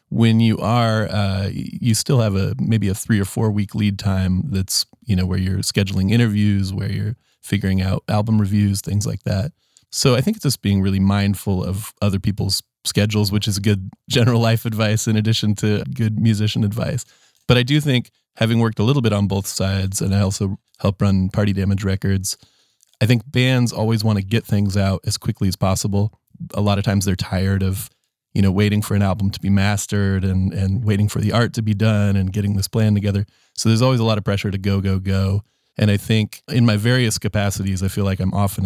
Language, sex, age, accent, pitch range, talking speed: English, male, 20-39, American, 95-110 Hz, 220 wpm